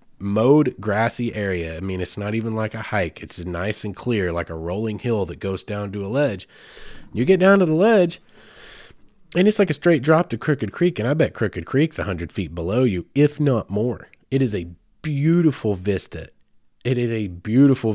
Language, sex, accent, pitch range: English, male, American, 95-120 Hz